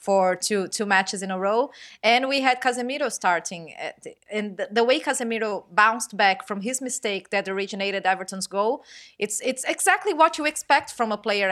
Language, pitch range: English, 215-265 Hz